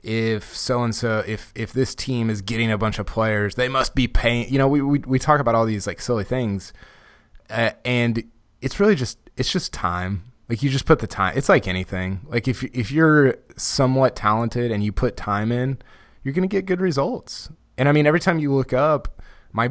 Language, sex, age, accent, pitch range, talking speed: English, male, 20-39, American, 100-120 Hz, 220 wpm